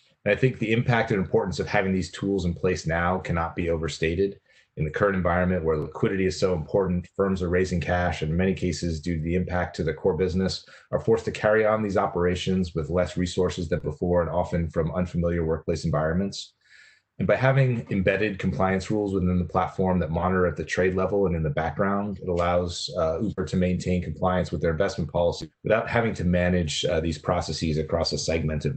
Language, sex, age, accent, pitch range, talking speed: English, male, 30-49, American, 85-95 Hz, 205 wpm